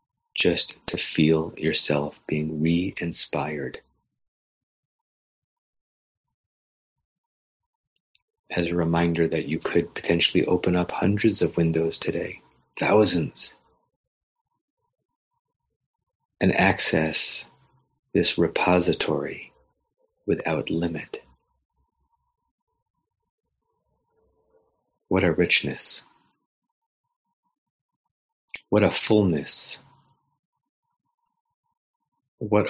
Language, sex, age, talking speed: English, male, 40-59, 60 wpm